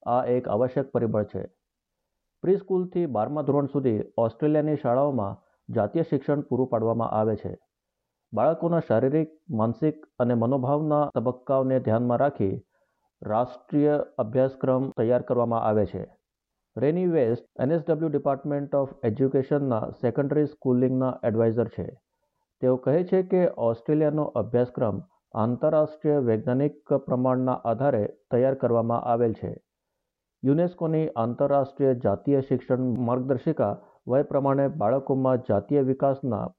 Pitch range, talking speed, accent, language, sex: 115-145 Hz, 105 wpm, native, Gujarati, male